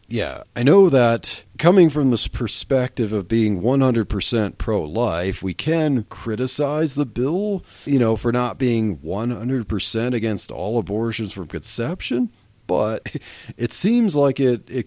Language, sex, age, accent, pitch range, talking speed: English, male, 40-59, American, 100-125 Hz, 135 wpm